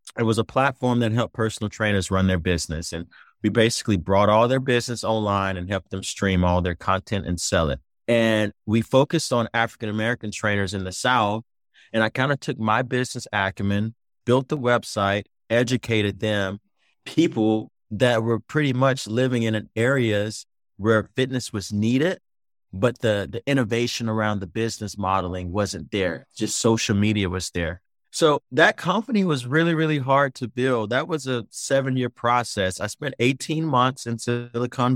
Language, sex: English, male